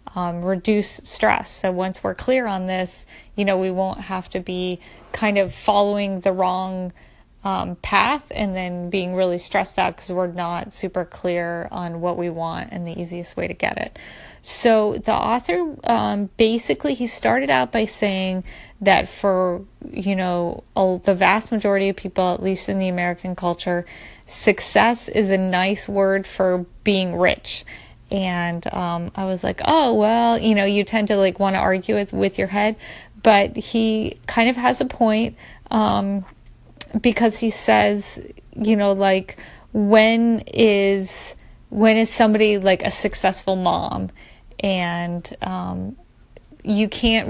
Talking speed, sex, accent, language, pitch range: 160 wpm, female, American, English, 185-215 Hz